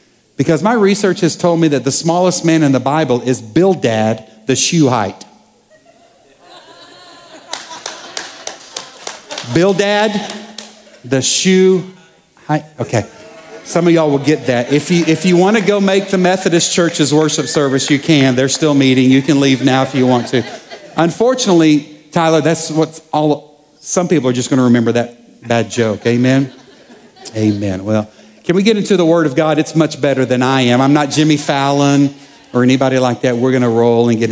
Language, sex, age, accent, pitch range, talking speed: English, male, 50-69, American, 130-160 Hz, 180 wpm